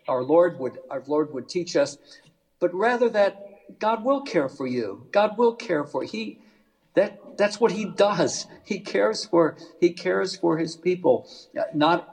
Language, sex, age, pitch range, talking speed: English, male, 60-79, 150-185 Hz, 180 wpm